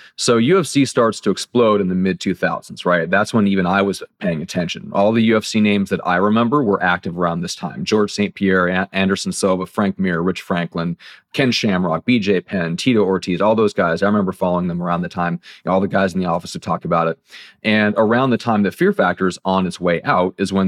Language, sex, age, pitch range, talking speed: English, male, 30-49, 90-110 Hz, 235 wpm